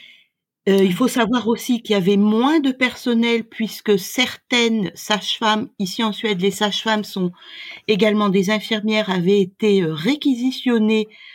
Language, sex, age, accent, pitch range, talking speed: French, female, 50-69, French, 200-260 Hz, 135 wpm